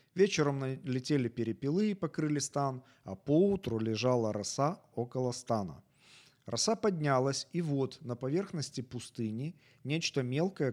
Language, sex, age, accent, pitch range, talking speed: Ukrainian, male, 40-59, native, 115-155 Hz, 115 wpm